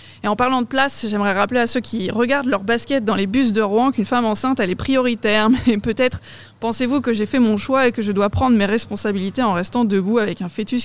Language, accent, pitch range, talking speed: French, French, 210-255 Hz, 250 wpm